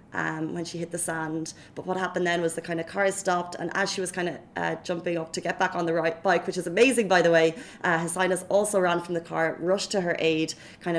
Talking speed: 275 wpm